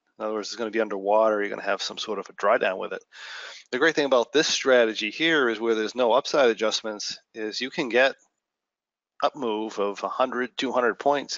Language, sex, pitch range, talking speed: English, male, 105-130 Hz, 225 wpm